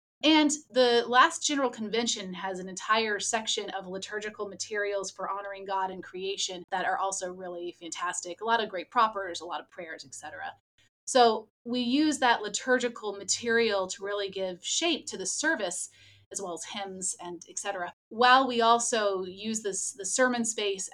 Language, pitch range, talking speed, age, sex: English, 185-230 Hz, 175 wpm, 30-49, female